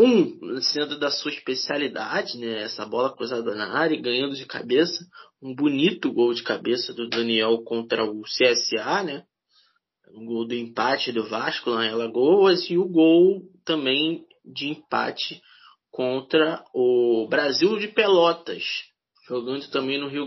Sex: male